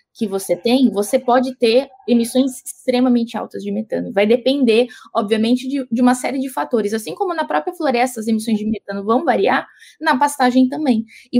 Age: 20-39